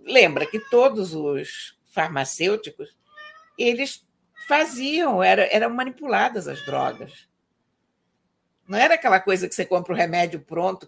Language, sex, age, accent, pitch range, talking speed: Portuguese, female, 60-79, Brazilian, 180-260 Hz, 110 wpm